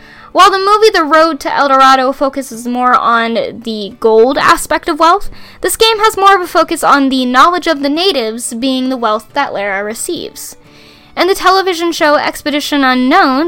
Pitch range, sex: 250-350 Hz, female